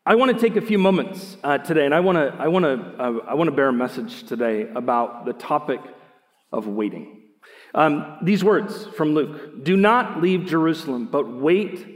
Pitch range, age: 150-245 Hz, 40-59